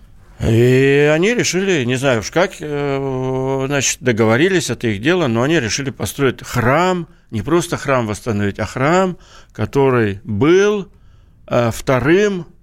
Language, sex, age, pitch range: Russian, male, 60-79, 115-155 Hz